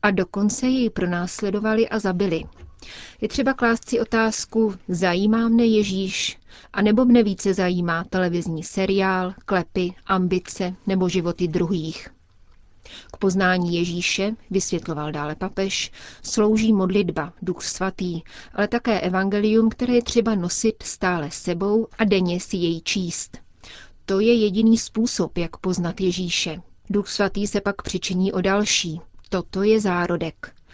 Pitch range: 180-210 Hz